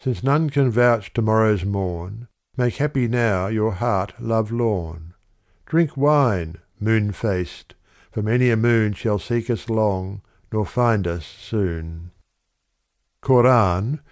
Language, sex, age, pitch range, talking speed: English, male, 60-79, 95-120 Hz, 130 wpm